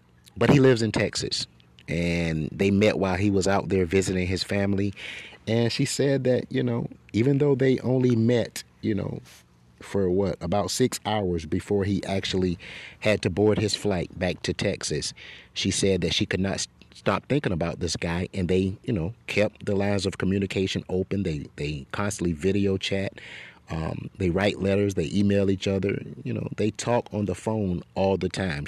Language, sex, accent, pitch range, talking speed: English, male, American, 90-110 Hz, 190 wpm